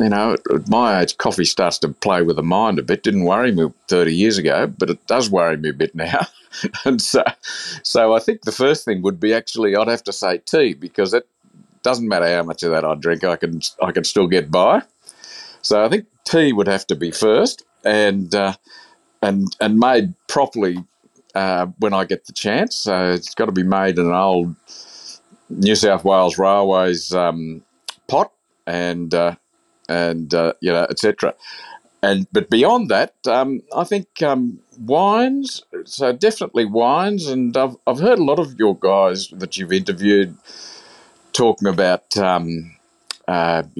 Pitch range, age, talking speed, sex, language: 85-115 Hz, 50-69, 180 wpm, male, English